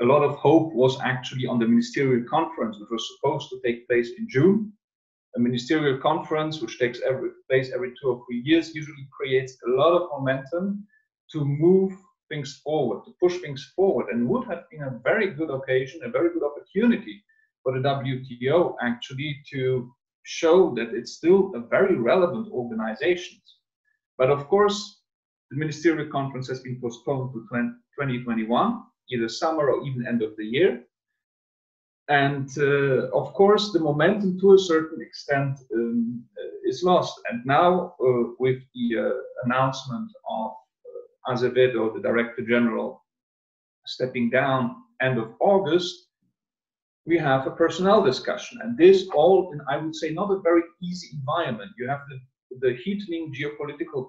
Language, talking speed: English, 155 wpm